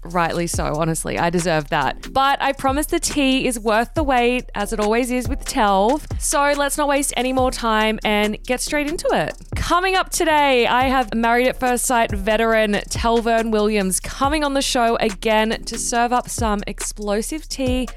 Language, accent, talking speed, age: English, Australian, 185 wpm, 20-39